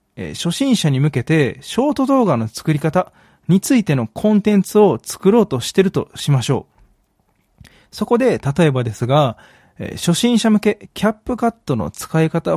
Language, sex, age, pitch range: Japanese, male, 20-39, 130-210 Hz